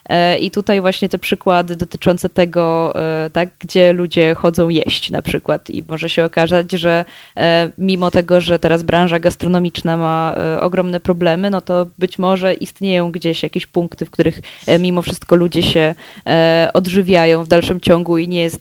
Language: Polish